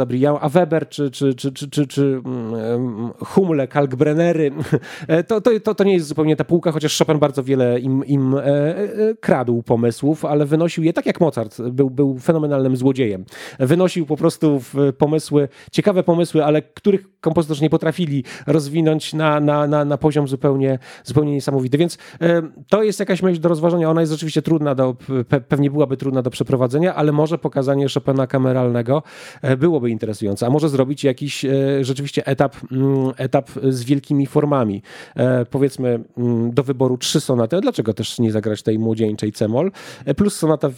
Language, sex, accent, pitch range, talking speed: Polish, male, native, 130-155 Hz, 160 wpm